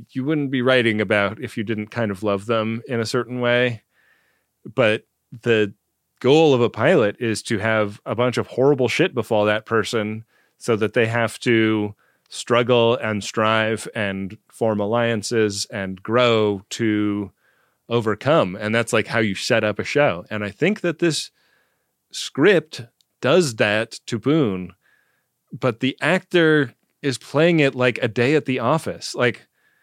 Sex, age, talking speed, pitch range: male, 30-49, 160 wpm, 110-130 Hz